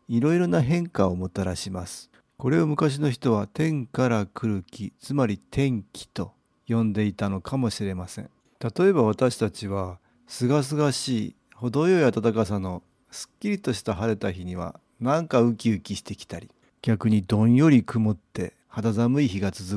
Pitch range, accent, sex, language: 100-130 Hz, native, male, Japanese